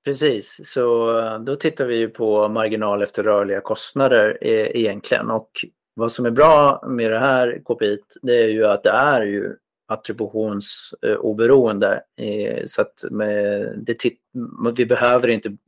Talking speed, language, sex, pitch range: 140 wpm, English, male, 110-145 Hz